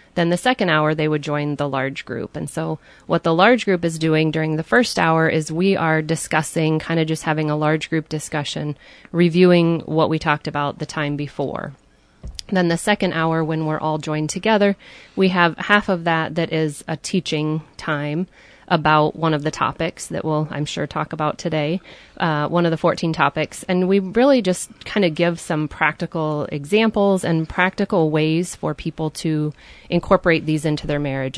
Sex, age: female, 30-49